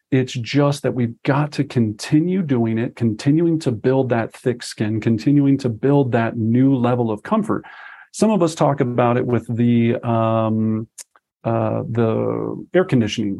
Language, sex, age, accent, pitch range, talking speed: English, male, 40-59, American, 115-150 Hz, 160 wpm